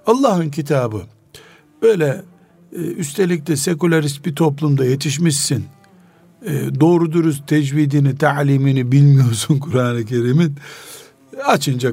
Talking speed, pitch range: 95 wpm, 130-180 Hz